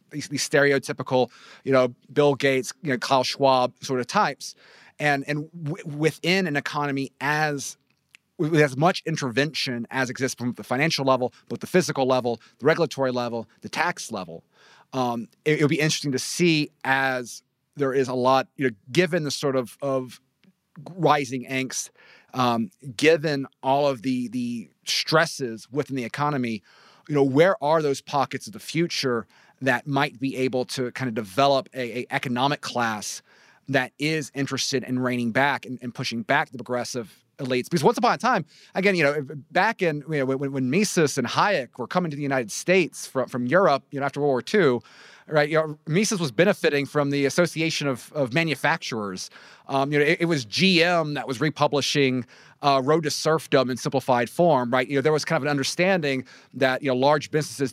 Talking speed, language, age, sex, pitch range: 185 wpm, English, 30-49, male, 130-155 Hz